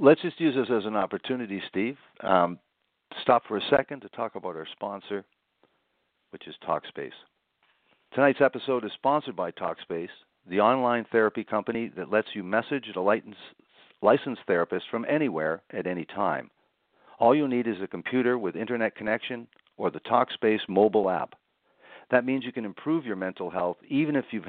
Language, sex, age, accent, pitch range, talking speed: English, male, 60-79, American, 100-120 Hz, 165 wpm